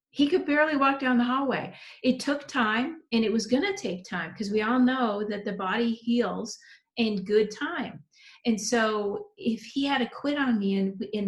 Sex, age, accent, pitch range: female, 40-59, American, 185-225 Hz